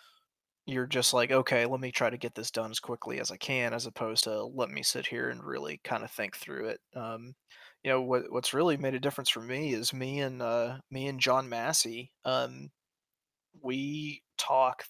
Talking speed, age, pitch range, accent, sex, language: 210 wpm, 20-39, 125-140 Hz, American, male, English